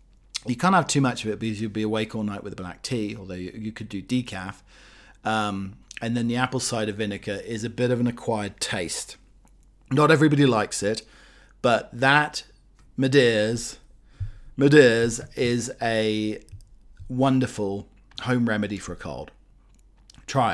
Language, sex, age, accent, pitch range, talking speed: English, male, 40-59, British, 110-135 Hz, 160 wpm